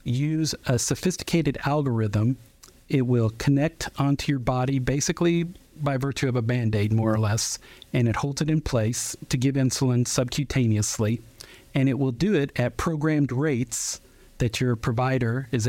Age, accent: 50-69, American